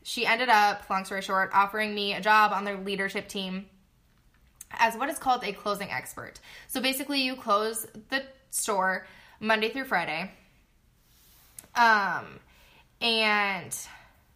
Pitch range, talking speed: 200-240 Hz, 135 wpm